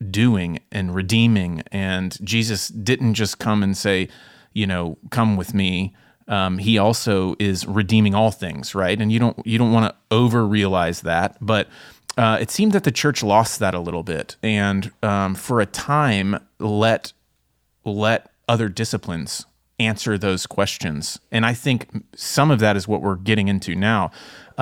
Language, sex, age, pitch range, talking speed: English, male, 30-49, 95-120 Hz, 165 wpm